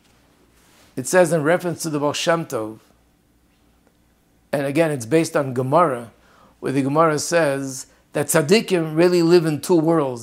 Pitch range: 140-170 Hz